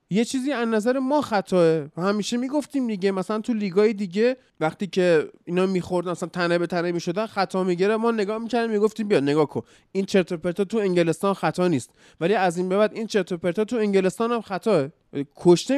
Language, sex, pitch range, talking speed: Persian, male, 170-225 Hz, 190 wpm